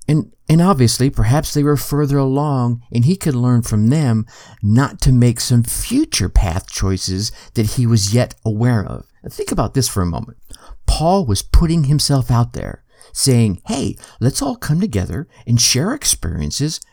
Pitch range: 110-155 Hz